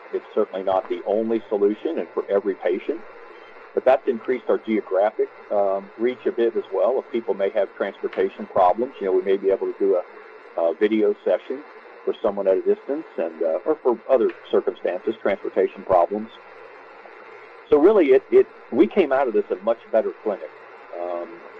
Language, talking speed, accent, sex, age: English, 185 wpm, American, male, 50-69